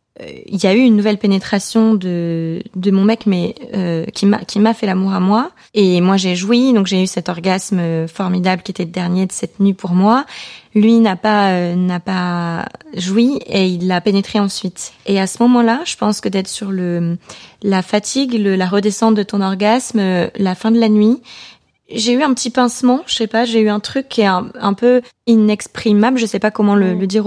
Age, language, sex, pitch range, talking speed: 20-39, French, female, 190-230 Hz, 220 wpm